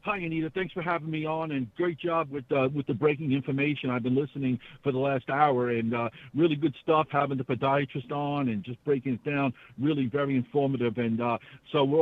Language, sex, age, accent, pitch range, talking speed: English, male, 60-79, American, 130-165 Hz, 220 wpm